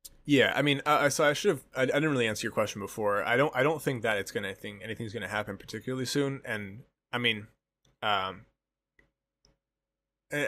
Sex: male